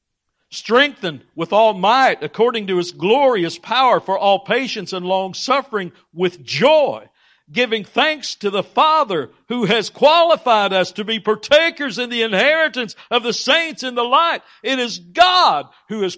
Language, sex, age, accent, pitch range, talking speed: English, male, 60-79, American, 165-235 Hz, 155 wpm